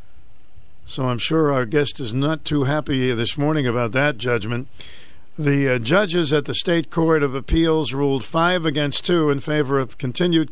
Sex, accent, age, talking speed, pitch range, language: male, American, 50-69, 175 wpm, 125-155 Hz, English